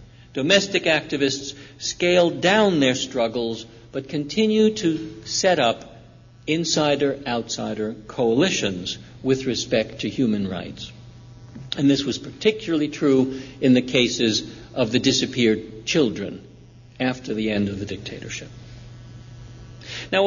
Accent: American